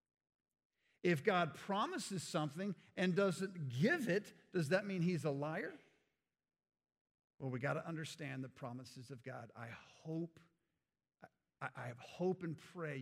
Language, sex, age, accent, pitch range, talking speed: English, male, 50-69, American, 120-165 Hz, 140 wpm